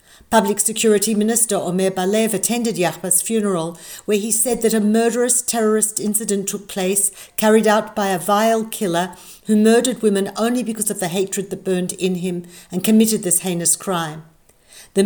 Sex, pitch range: female, 180-215 Hz